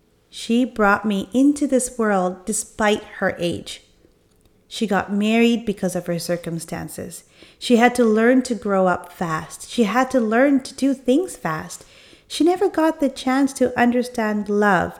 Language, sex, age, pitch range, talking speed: English, female, 30-49, 195-255 Hz, 160 wpm